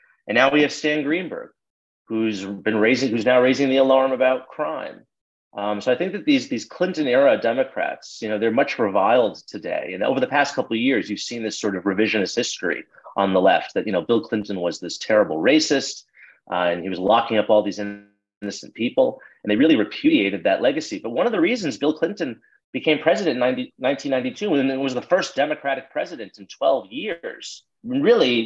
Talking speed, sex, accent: 205 wpm, male, American